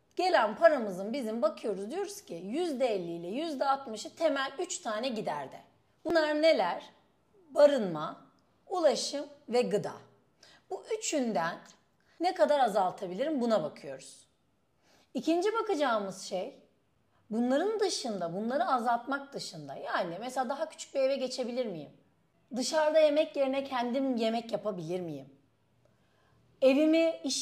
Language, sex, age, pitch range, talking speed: Turkish, female, 40-59, 205-300 Hz, 110 wpm